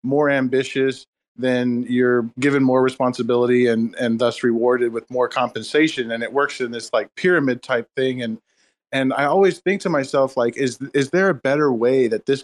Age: 20-39